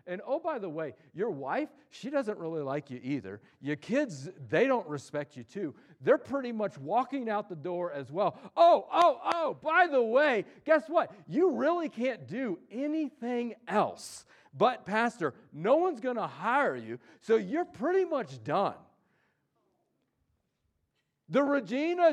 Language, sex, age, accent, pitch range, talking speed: English, male, 40-59, American, 205-300 Hz, 155 wpm